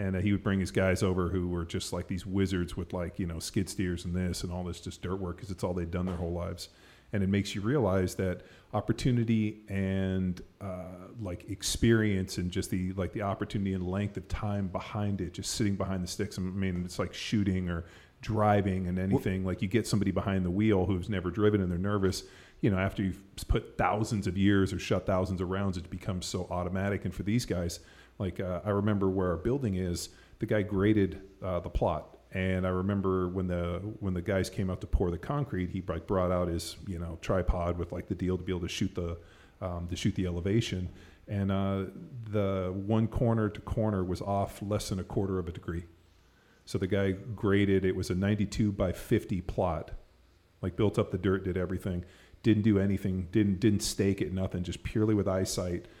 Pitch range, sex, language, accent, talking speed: 90-105 Hz, male, English, American, 220 wpm